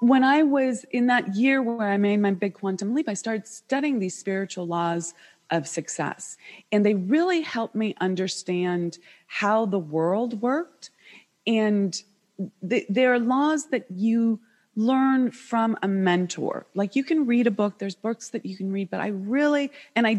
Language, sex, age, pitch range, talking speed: English, female, 30-49, 175-225 Hz, 175 wpm